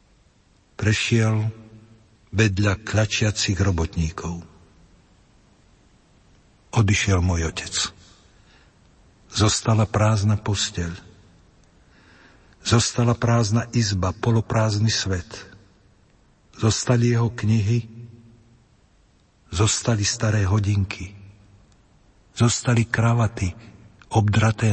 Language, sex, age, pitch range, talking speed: Slovak, male, 60-79, 100-115 Hz, 60 wpm